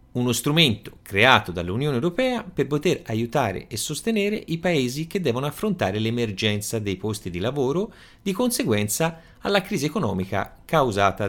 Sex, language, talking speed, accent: male, Italian, 140 wpm, native